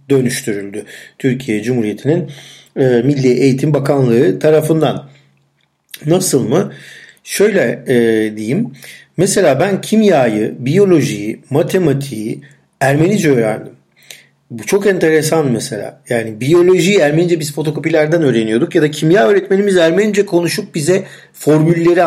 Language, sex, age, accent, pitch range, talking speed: Turkish, male, 40-59, native, 120-165 Hz, 105 wpm